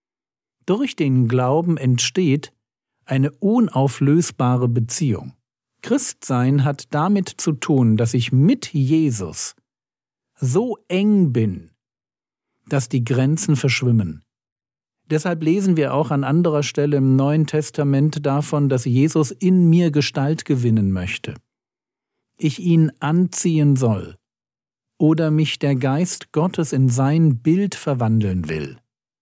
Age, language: 50-69, German